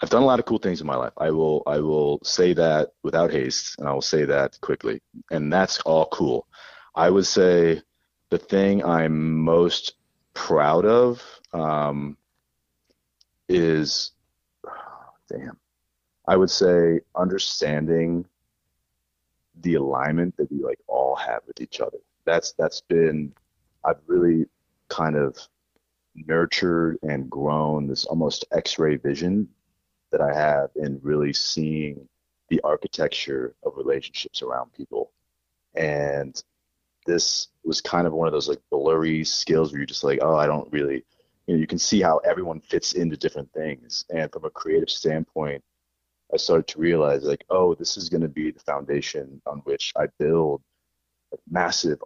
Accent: American